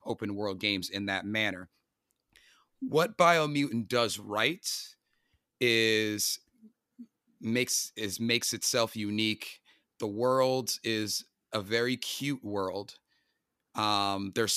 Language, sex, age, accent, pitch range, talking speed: English, male, 30-49, American, 105-125 Hz, 105 wpm